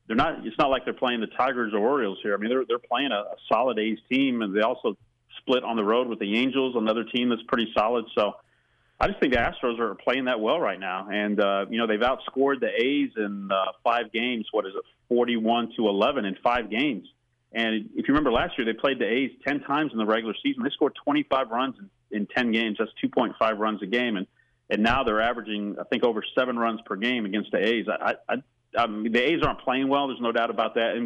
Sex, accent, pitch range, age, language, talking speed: male, American, 105-120 Hz, 40-59, English, 250 wpm